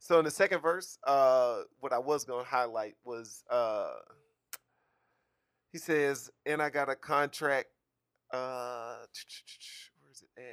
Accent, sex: American, male